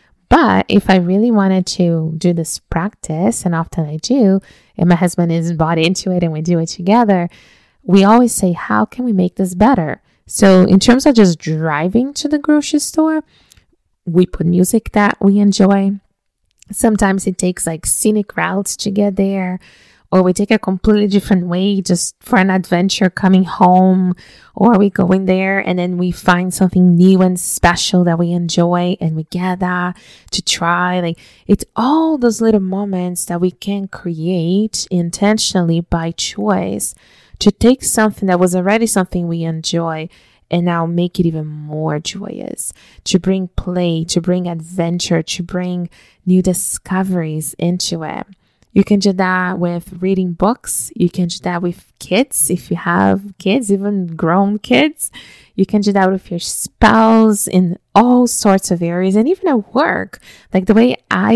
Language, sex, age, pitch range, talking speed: English, female, 20-39, 175-205 Hz, 170 wpm